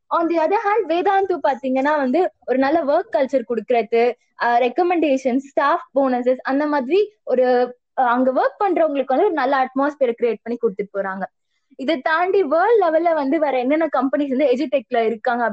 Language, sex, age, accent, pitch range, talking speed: Tamil, female, 20-39, native, 255-335 Hz, 45 wpm